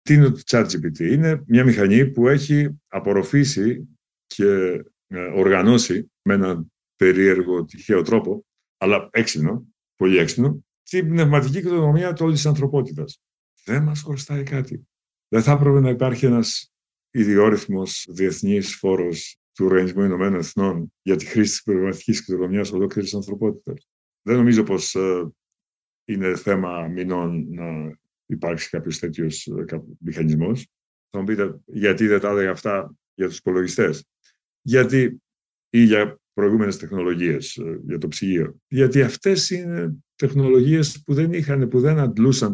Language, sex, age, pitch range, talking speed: Greek, male, 50-69, 90-135 Hz, 125 wpm